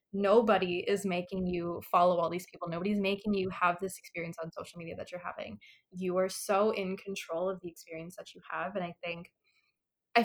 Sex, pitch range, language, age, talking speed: female, 175-200 Hz, English, 20-39, 205 wpm